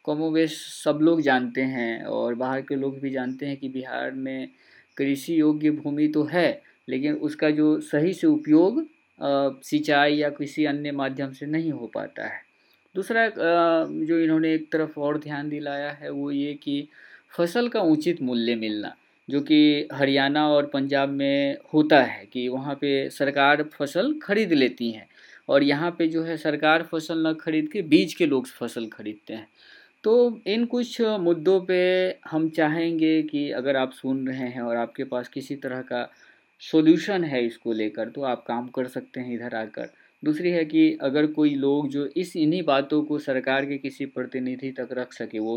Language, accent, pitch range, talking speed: Hindi, native, 130-160 Hz, 180 wpm